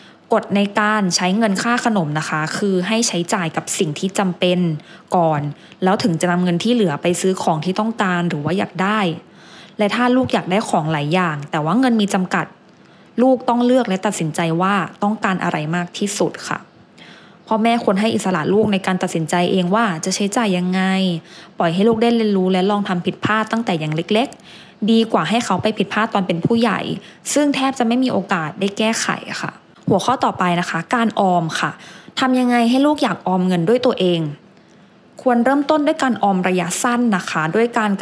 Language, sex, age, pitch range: English, female, 20-39, 180-225 Hz